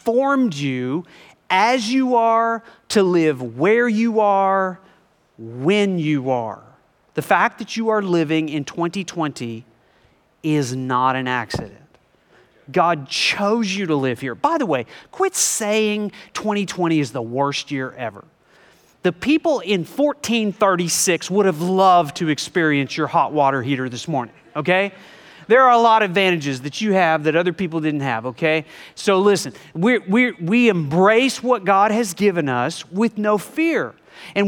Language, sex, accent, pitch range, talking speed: English, male, American, 150-220 Hz, 155 wpm